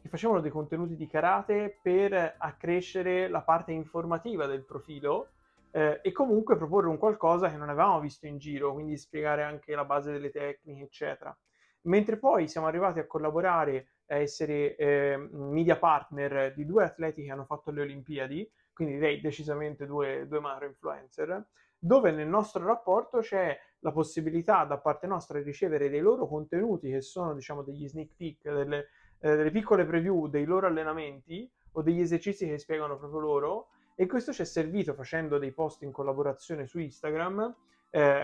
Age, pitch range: 30-49, 145-180 Hz